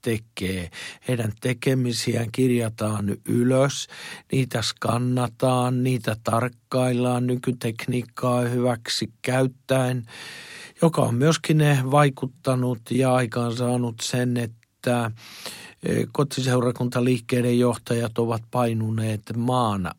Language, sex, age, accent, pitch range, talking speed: Finnish, male, 50-69, native, 115-130 Hz, 85 wpm